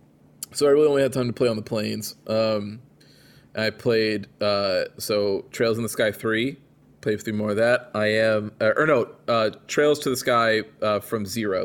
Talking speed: 200 wpm